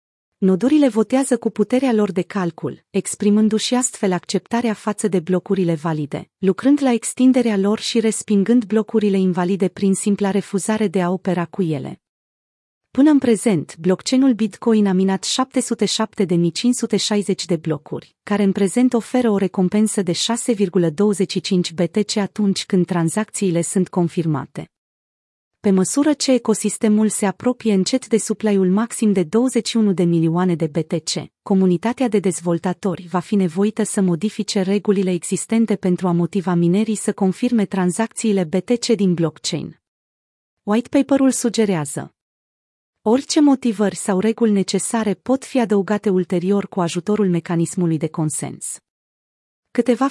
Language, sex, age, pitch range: Romanian, female, 30-49, 180-225 Hz